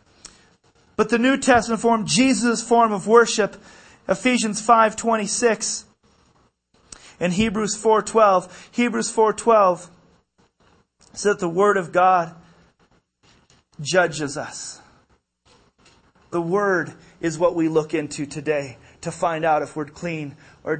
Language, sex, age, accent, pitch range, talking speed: English, male, 30-49, American, 155-200 Hz, 115 wpm